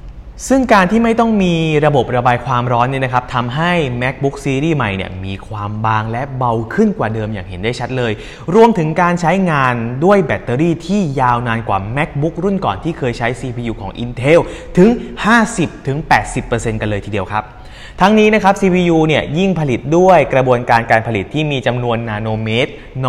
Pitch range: 110-155 Hz